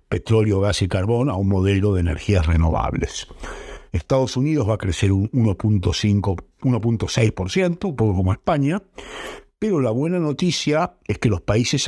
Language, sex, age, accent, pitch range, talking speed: Spanish, male, 60-79, Argentinian, 95-125 Hz, 145 wpm